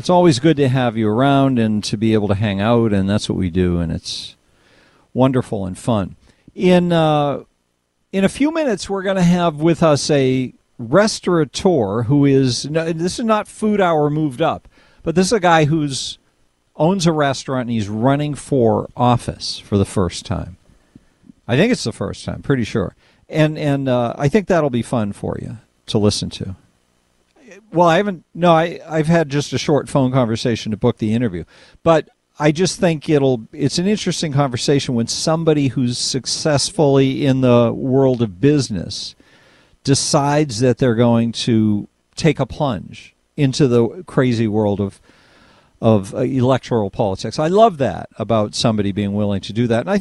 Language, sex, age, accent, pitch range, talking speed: English, male, 50-69, American, 110-160 Hz, 180 wpm